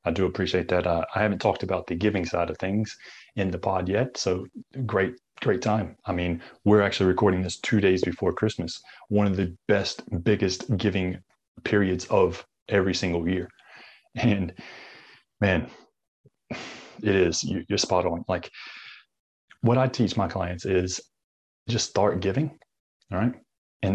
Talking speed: 160 wpm